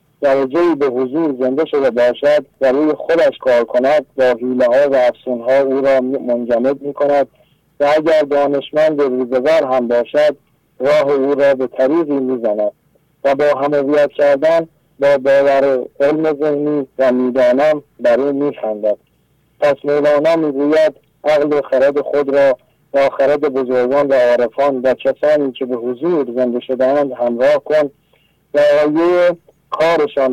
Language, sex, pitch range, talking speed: English, male, 130-150 Hz, 145 wpm